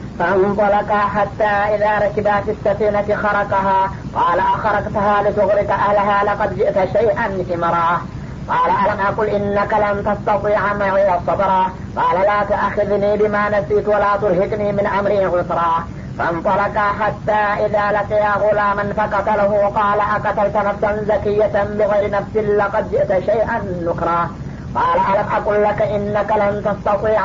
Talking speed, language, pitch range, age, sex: 125 wpm, Amharic, 200-210 Hz, 30-49, female